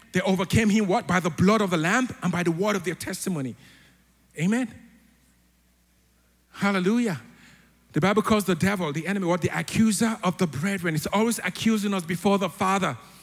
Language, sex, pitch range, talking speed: English, male, 155-215 Hz, 175 wpm